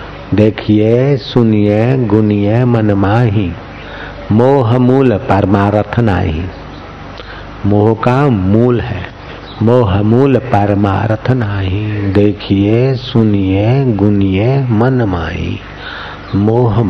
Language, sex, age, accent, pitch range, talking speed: Hindi, male, 50-69, native, 100-125 Hz, 65 wpm